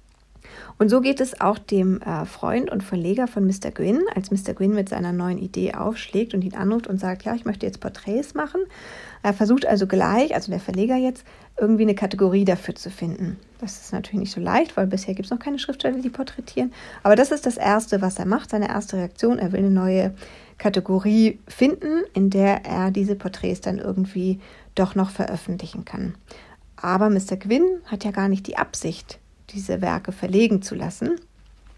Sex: female